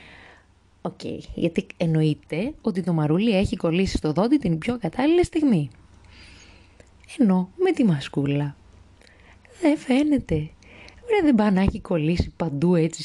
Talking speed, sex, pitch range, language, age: 130 wpm, female, 145-220 Hz, Greek, 20-39